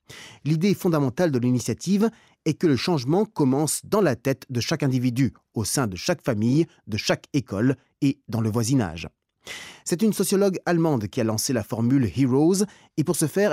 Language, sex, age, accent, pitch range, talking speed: French, male, 30-49, French, 120-160 Hz, 180 wpm